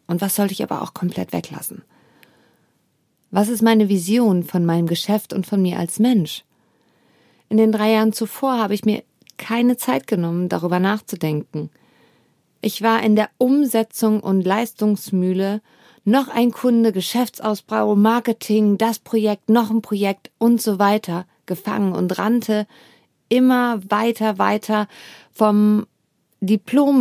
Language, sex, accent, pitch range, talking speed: German, female, German, 185-230 Hz, 135 wpm